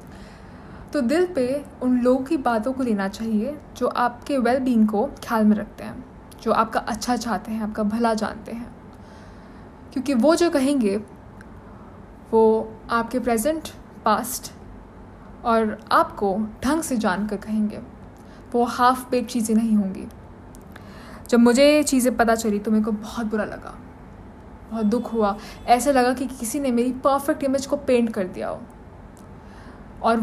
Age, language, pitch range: 10-29, Hindi, 220-270 Hz